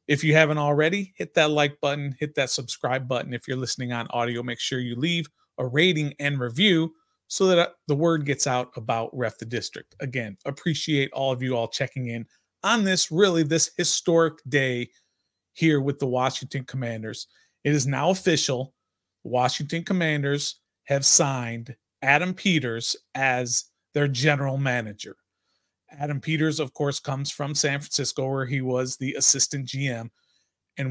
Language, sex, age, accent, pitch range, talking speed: English, male, 30-49, American, 125-160 Hz, 160 wpm